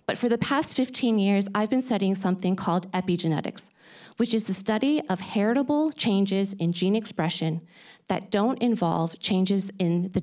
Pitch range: 180-235 Hz